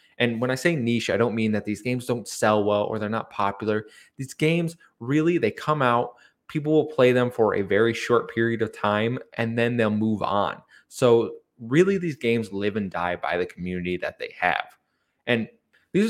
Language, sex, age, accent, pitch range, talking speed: English, male, 20-39, American, 110-150 Hz, 205 wpm